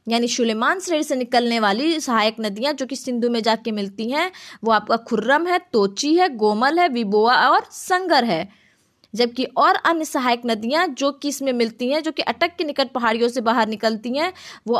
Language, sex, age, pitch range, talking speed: Hindi, female, 20-39, 220-330 Hz, 195 wpm